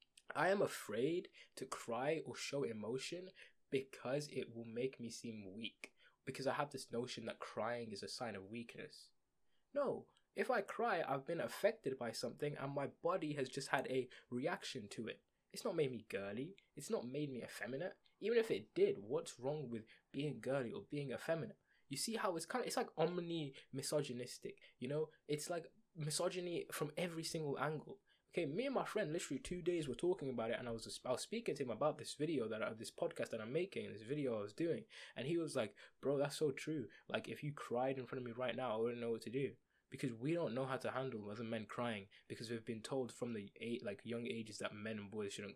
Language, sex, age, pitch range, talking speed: English, male, 20-39, 125-175 Hz, 225 wpm